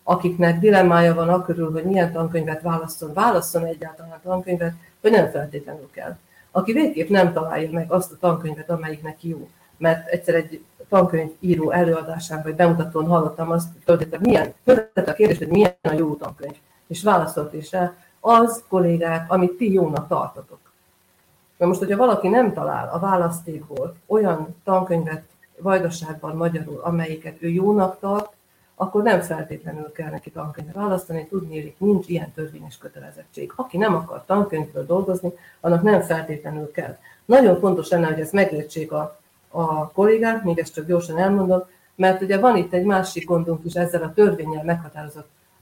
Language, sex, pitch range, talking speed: Hungarian, female, 160-185 Hz, 155 wpm